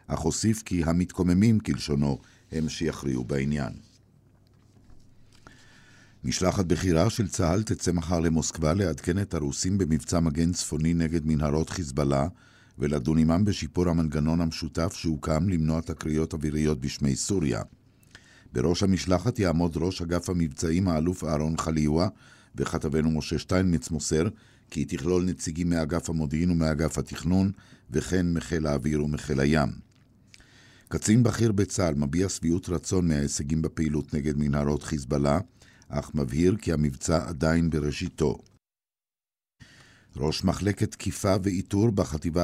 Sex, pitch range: male, 75-95 Hz